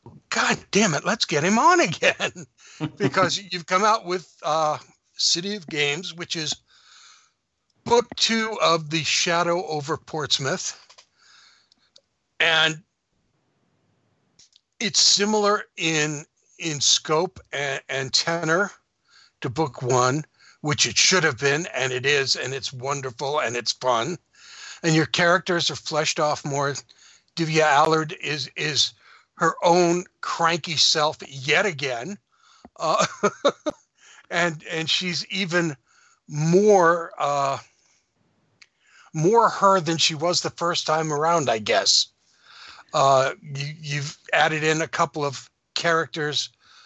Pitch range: 140-170 Hz